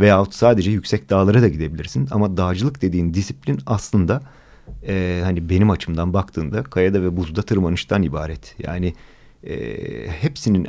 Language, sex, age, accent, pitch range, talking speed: Turkish, male, 40-59, native, 85-105 Hz, 135 wpm